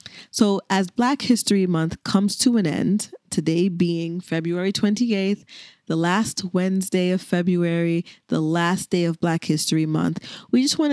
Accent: American